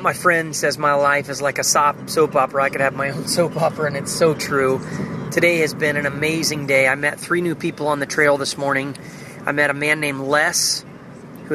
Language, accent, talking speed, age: English, American, 230 wpm, 30-49